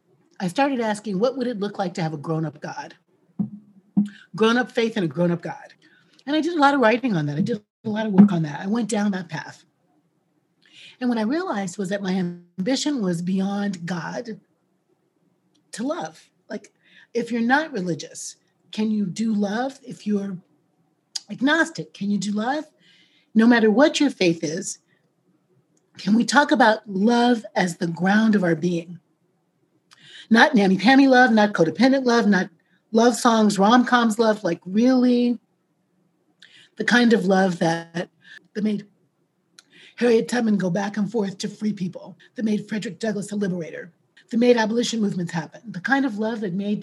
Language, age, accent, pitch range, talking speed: English, 40-59, American, 175-230 Hz, 175 wpm